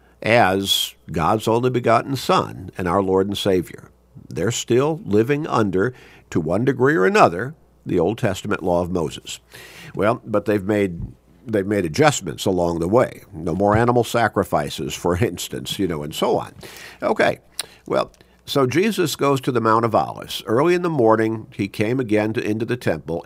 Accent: American